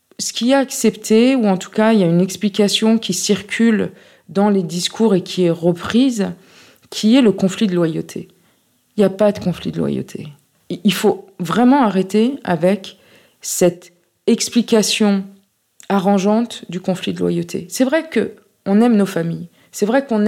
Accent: French